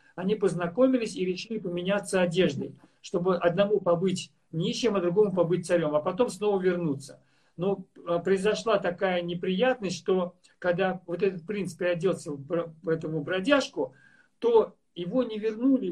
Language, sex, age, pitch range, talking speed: Russian, male, 50-69, 175-225 Hz, 130 wpm